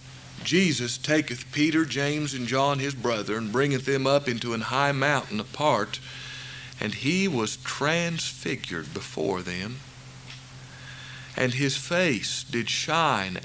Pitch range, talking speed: 125-150 Hz, 125 wpm